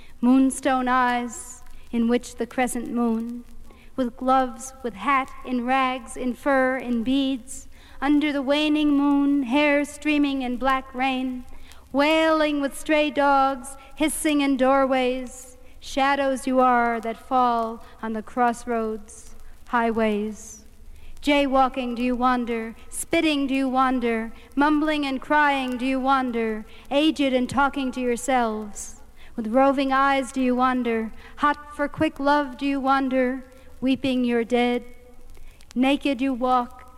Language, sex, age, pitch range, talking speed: English, female, 50-69, 250-275 Hz, 130 wpm